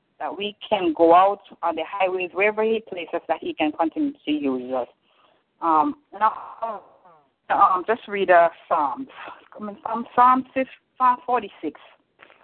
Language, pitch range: English, 170-235 Hz